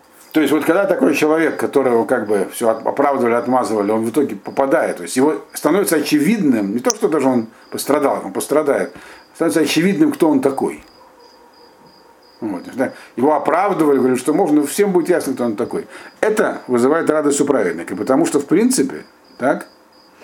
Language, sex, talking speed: Russian, male, 165 wpm